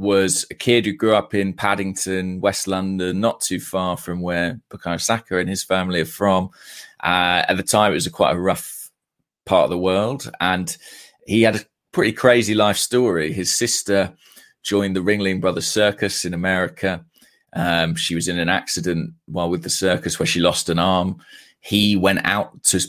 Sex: male